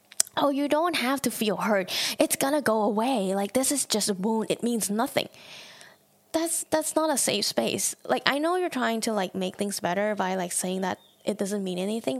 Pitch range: 200-260 Hz